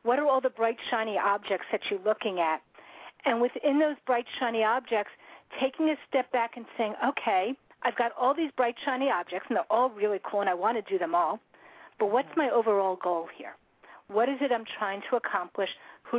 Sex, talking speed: female, 210 wpm